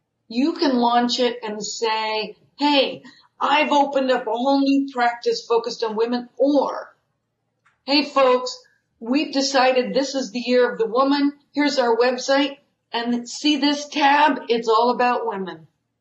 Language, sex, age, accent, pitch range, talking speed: English, female, 50-69, American, 220-270 Hz, 150 wpm